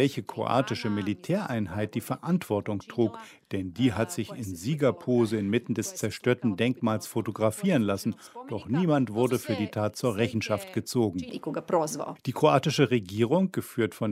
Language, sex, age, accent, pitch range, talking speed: German, male, 50-69, German, 110-145 Hz, 135 wpm